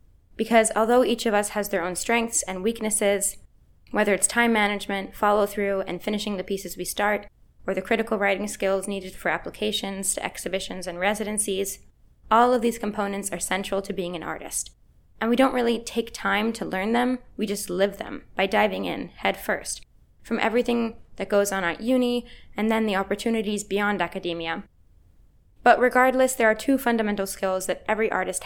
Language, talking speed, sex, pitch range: English, 180 wpm, female, 190-230 Hz